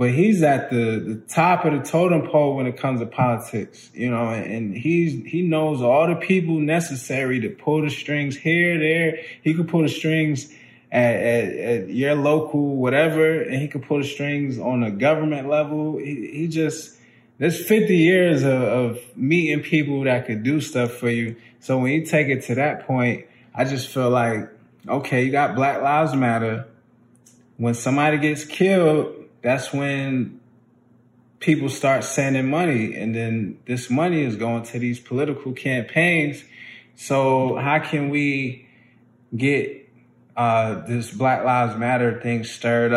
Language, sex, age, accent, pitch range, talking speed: English, male, 20-39, American, 120-150 Hz, 165 wpm